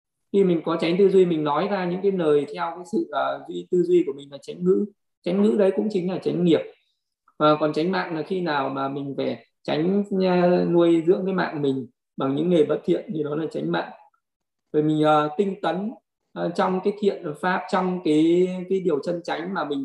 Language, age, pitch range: Vietnamese, 20-39, 150-185 Hz